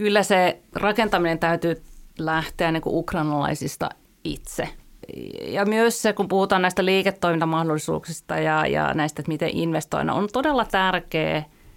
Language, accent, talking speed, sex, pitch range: Finnish, native, 120 wpm, female, 160-195 Hz